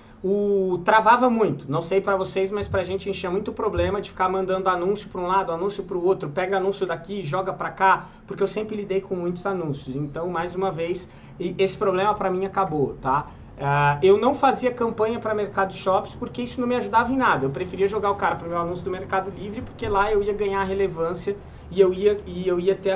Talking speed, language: 220 wpm, Portuguese